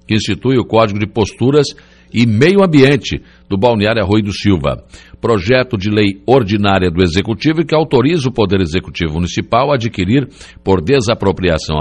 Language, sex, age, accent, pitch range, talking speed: Portuguese, male, 60-79, Brazilian, 90-120 Hz, 160 wpm